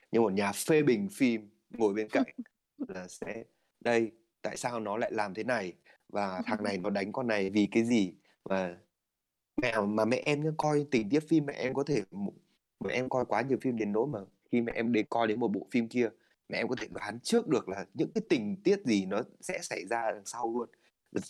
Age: 20-39